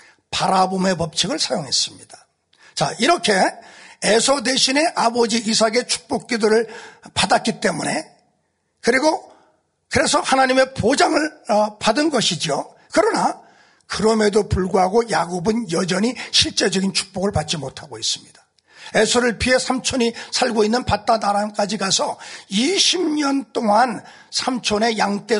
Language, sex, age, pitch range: Korean, male, 50-69, 200-275 Hz